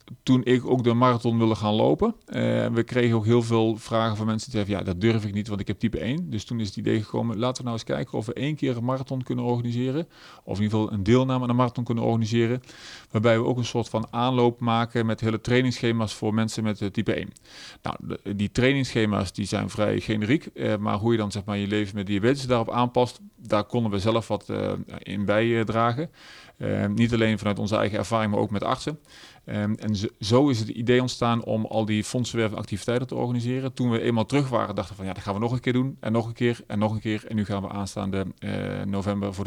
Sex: male